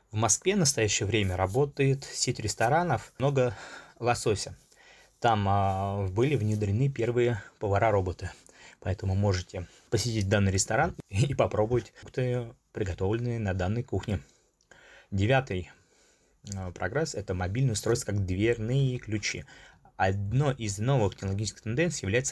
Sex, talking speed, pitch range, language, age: male, 115 wpm, 95-125 Hz, Russian, 20-39